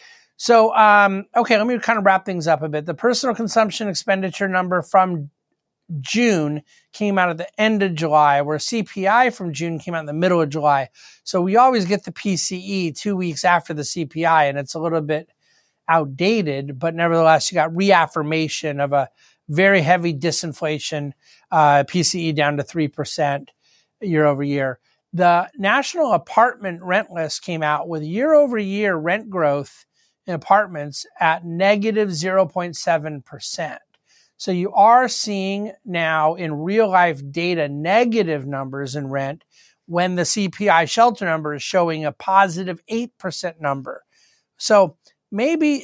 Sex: male